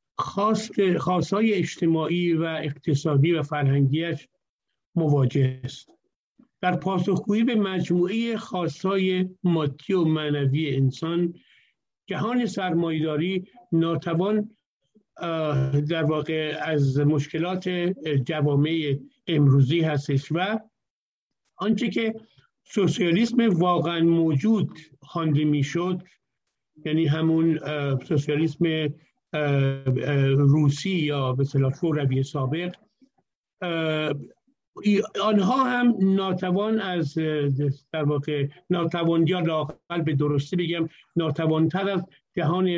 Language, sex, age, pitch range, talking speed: Persian, male, 50-69, 150-185 Hz, 85 wpm